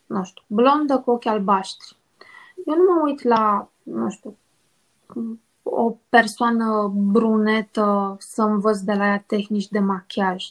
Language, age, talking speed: Romanian, 20-39, 135 wpm